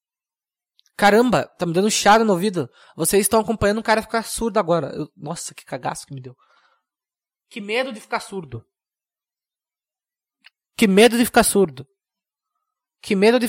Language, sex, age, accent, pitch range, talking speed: Portuguese, male, 20-39, Brazilian, 170-235 Hz, 160 wpm